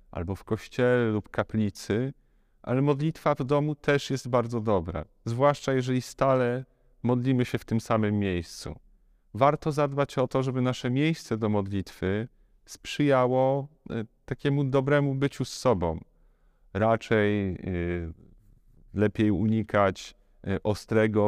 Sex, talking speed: male, 115 wpm